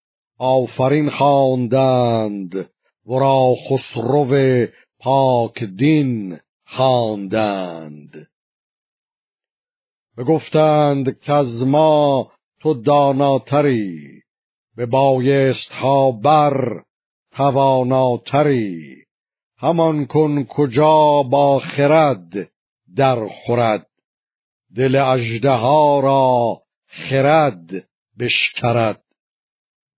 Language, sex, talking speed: Persian, male, 60 wpm